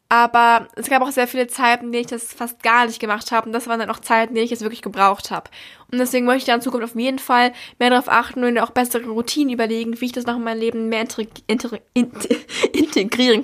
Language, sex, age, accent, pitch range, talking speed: German, female, 10-29, German, 230-260 Hz, 260 wpm